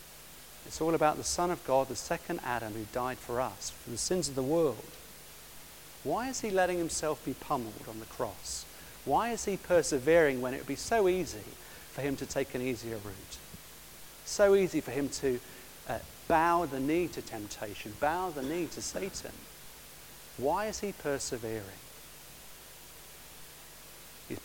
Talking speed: 165 wpm